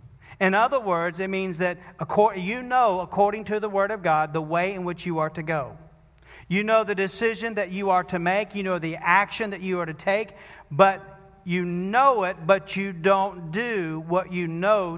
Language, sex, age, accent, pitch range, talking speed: English, male, 40-59, American, 150-195 Hz, 205 wpm